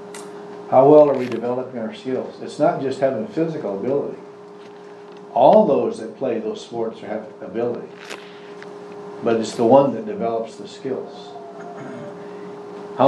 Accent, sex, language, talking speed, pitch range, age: American, male, English, 140 wpm, 130-190 Hz, 60-79